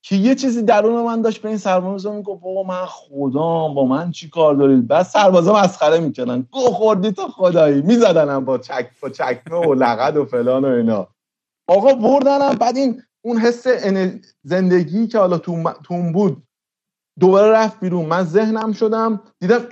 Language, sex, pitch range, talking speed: Persian, male, 145-220 Hz, 165 wpm